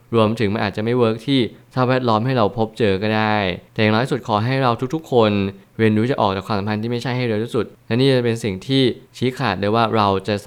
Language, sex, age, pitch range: Thai, male, 20-39, 105-120 Hz